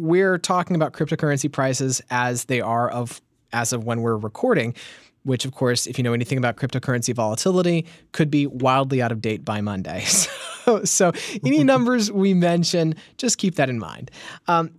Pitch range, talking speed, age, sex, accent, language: 120-160 Hz, 180 wpm, 20-39, male, American, English